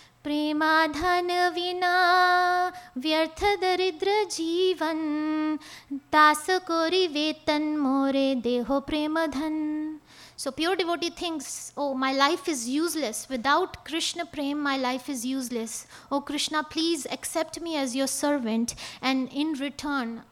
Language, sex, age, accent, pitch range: English, female, 20-39, Indian, 255-315 Hz